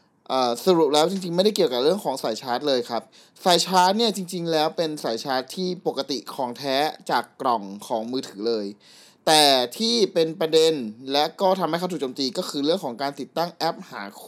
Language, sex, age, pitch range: Thai, male, 20-39, 130-185 Hz